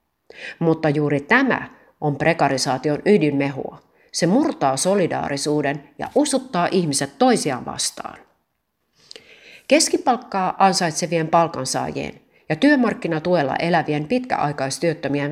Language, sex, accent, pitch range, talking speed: Finnish, female, native, 145-205 Hz, 80 wpm